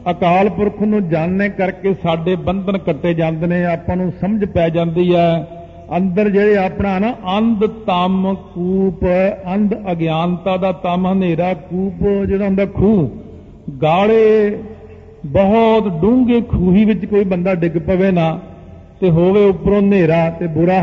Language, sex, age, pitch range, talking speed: Punjabi, male, 50-69, 170-200 Hz, 135 wpm